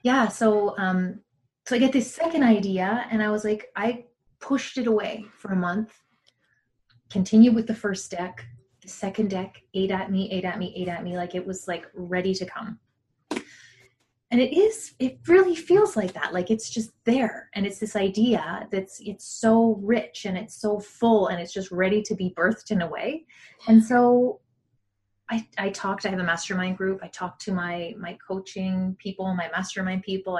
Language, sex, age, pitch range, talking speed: English, female, 20-39, 180-220 Hz, 195 wpm